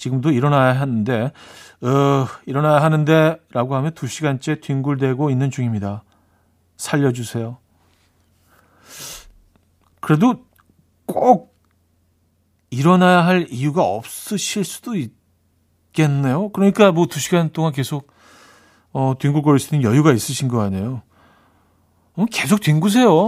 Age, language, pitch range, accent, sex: 40-59, Korean, 105-165 Hz, native, male